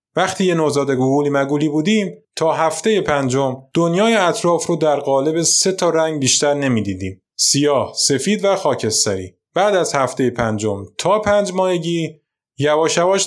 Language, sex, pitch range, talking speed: Persian, male, 130-175 Hz, 140 wpm